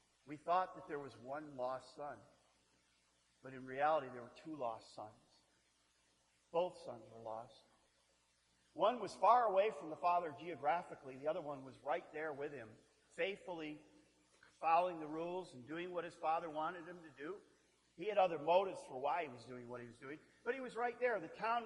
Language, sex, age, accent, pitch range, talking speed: English, male, 50-69, American, 115-190 Hz, 190 wpm